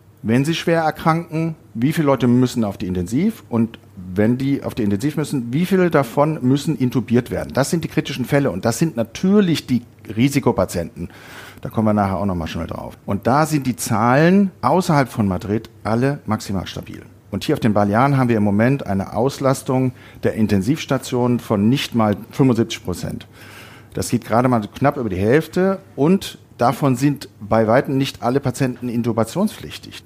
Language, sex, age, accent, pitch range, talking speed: German, male, 40-59, German, 110-145 Hz, 180 wpm